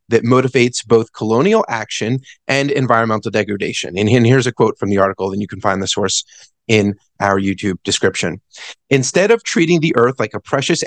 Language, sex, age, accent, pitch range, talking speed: English, male, 30-49, American, 105-140 Hz, 180 wpm